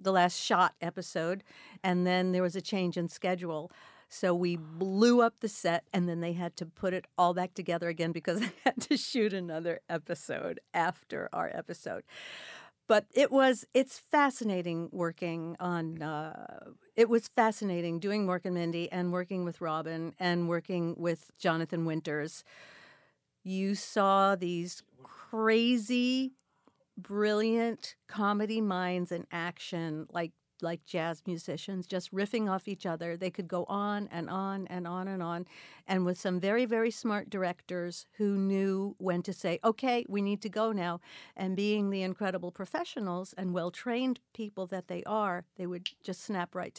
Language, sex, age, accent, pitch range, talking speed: English, female, 50-69, American, 175-210 Hz, 160 wpm